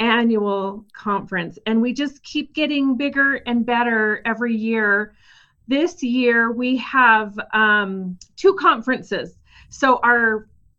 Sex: female